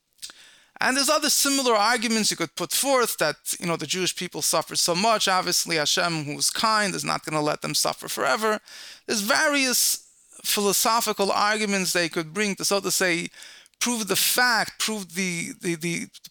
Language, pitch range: English, 170-220 Hz